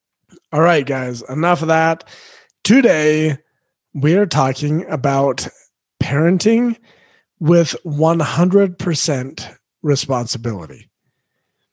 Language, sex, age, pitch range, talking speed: English, male, 40-59, 140-175 Hz, 75 wpm